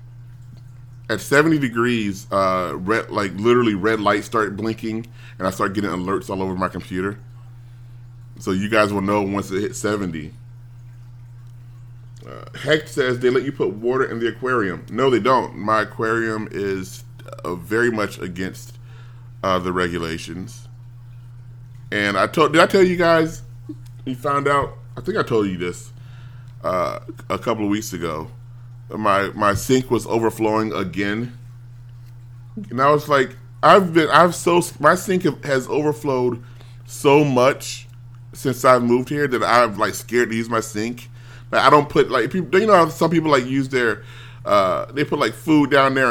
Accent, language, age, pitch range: American, English, 30-49, 110-130 Hz